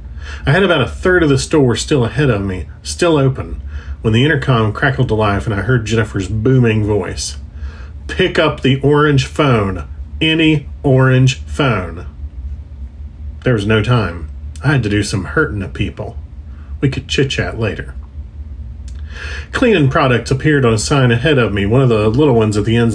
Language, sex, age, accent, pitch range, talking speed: English, male, 40-59, American, 95-140 Hz, 180 wpm